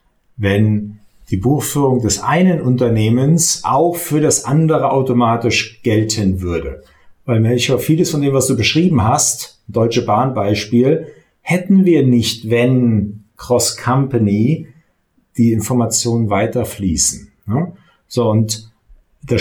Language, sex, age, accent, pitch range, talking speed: German, male, 50-69, German, 110-135 Hz, 110 wpm